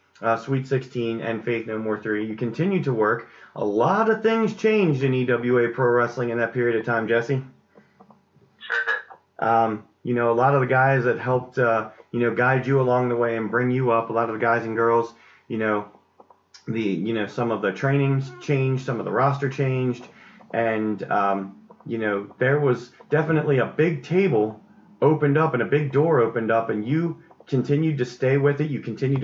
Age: 30-49